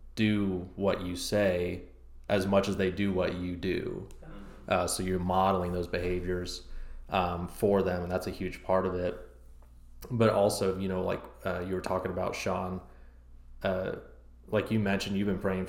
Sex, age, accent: male, 20-39, American